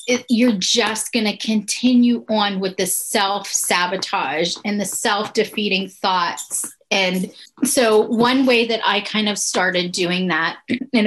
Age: 30-49